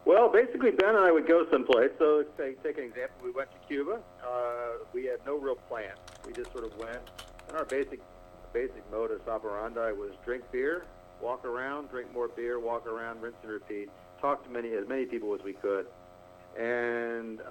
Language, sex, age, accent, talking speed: English, male, 50-69, American, 195 wpm